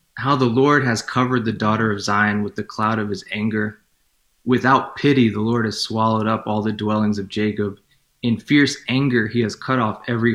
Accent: American